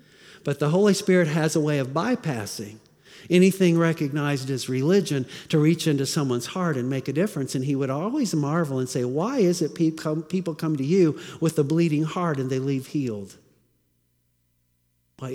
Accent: American